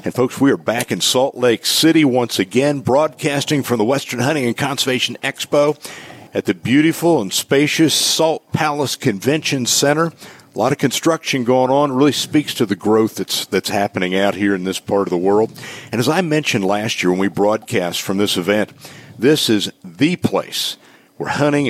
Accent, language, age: American, English, 50-69